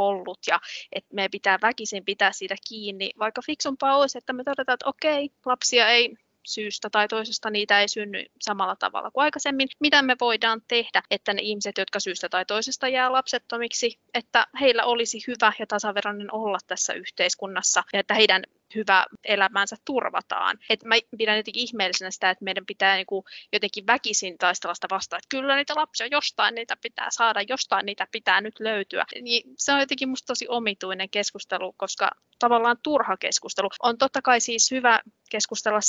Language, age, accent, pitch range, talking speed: Finnish, 20-39, native, 195-240 Hz, 170 wpm